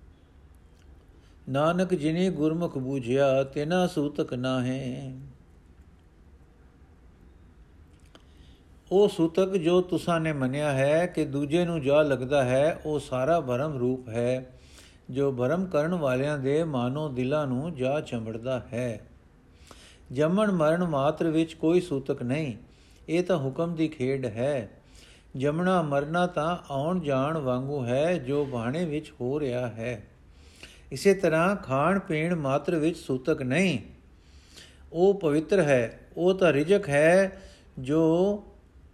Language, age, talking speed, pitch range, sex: Punjabi, 50-69, 115 wpm, 120-170 Hz, male